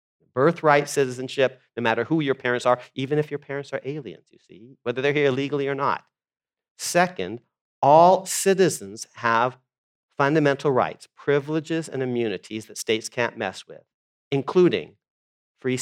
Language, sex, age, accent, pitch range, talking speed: English, male, 40-59, American, 130-180 Hz, 145 wpm